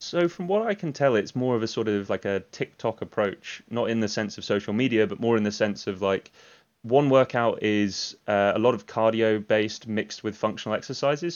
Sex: male